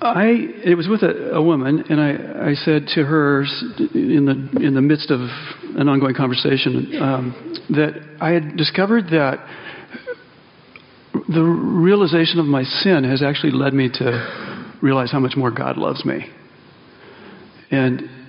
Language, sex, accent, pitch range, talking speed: English, male, American, 145-195 Hz, 150 wpm